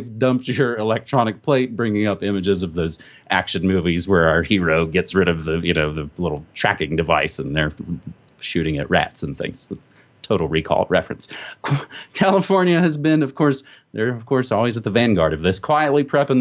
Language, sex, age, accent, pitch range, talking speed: English, male, 30-49, American, 105-160 Hz, 185 wpm